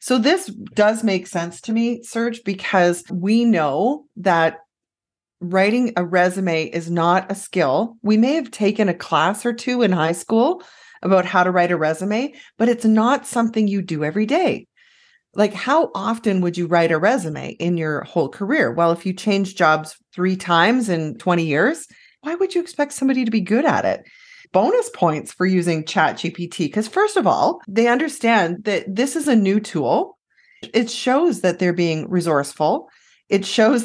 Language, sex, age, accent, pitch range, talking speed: English, female, 30-49, American, 170-235 Hz, 180 wpm